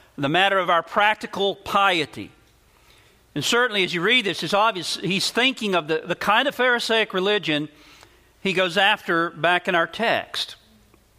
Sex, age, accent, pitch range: male, 50-69, American, 160-220 Hz